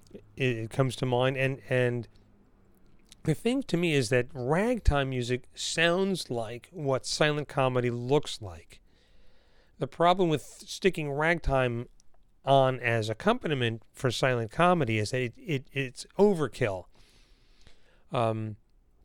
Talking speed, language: 125 wpm, English